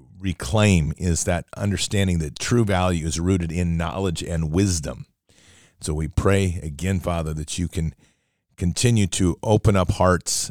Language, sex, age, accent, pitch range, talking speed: English, male, 40-59, American, 85-100 Hz, 150 wpm